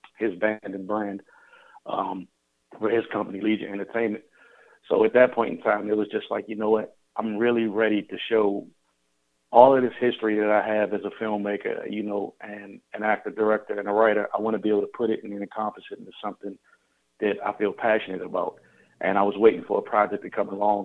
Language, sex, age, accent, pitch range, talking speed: English, male, 40-59, American, 100-110 Hz, 215 wpm